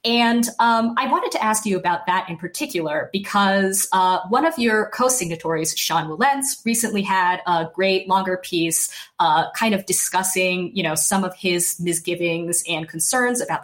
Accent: American